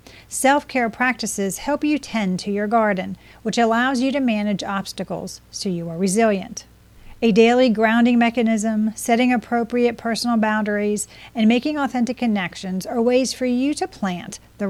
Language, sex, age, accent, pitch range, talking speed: English, female, 40-59, American, 200-240 Hz, 150 wpm